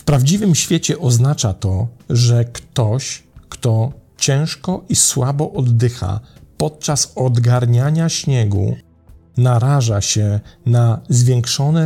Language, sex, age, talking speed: Polish, male, 50-69, 95 wpm